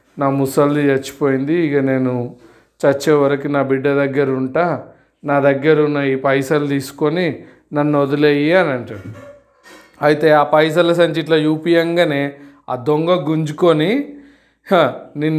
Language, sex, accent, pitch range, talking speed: Telugu, male, native, 145-170 Hz, 115 wpm